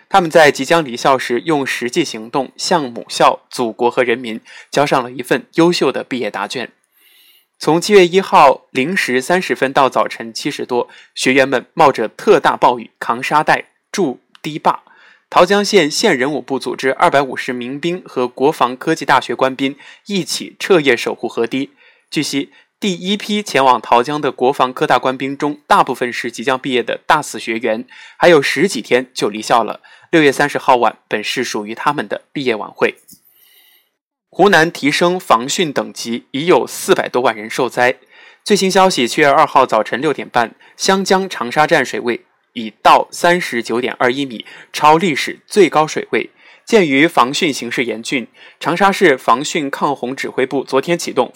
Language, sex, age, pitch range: Chinese, male, 20-39, 125-170 Hz